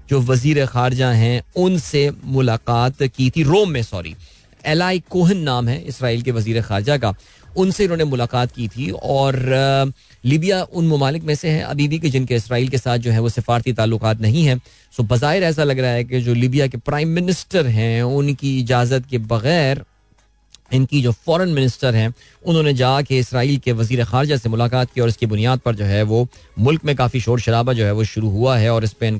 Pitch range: 115-140 Hz